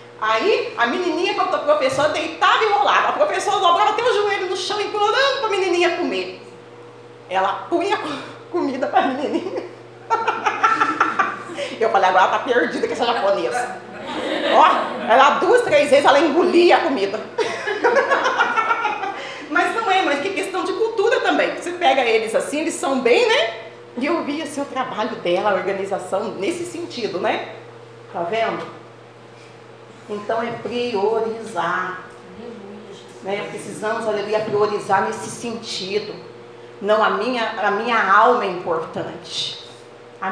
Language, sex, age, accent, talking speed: Portuguese, female, 30-49, Brazilian, 140 wpm